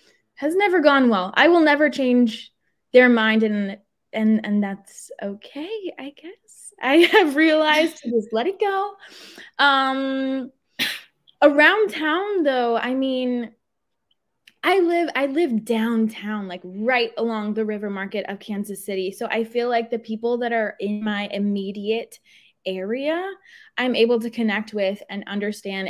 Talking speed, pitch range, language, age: 150 wpm, 200-270 Hz, English, 10-29